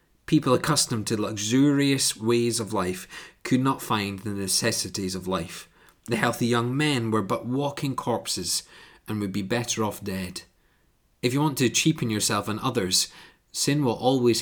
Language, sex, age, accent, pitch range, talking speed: English, male, 30-49, British, 105-130 Hz, 160 wpm